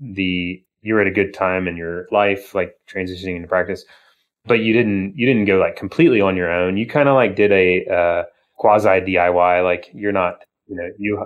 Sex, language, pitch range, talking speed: male, English, 90-105 Hz, 210 wpm